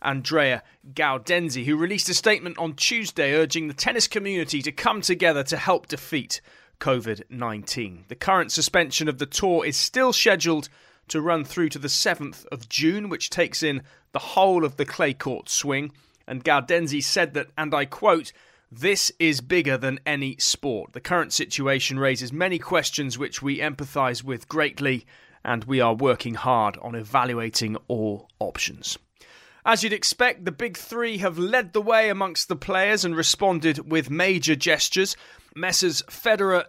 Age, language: 30-49, English